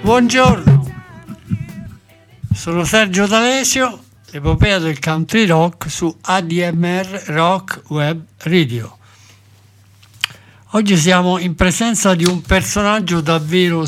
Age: 60-79